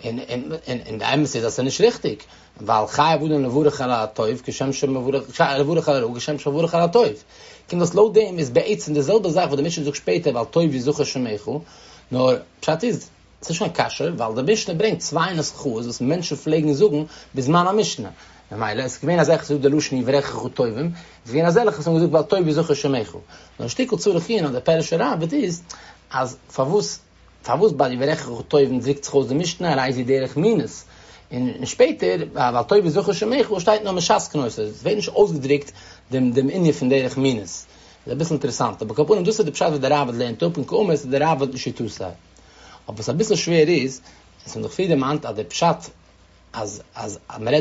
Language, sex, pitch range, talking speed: English, male, 120-165 Hz, 40 wpm